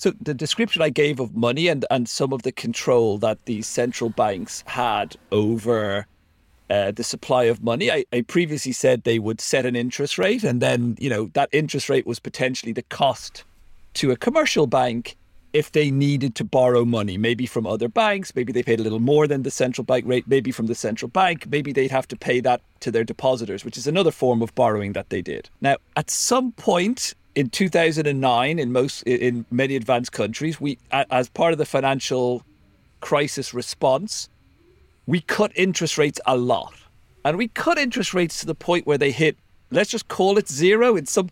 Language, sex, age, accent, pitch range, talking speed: English, male, 40-59, British, 120-170 Hz, 200 wpm